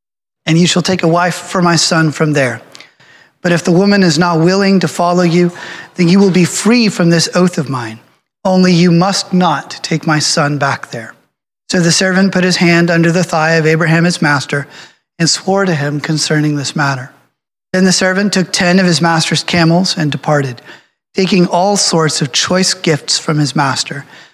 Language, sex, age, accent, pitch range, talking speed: English, male, 30-49, American, 150-180 Hz, 195 wpm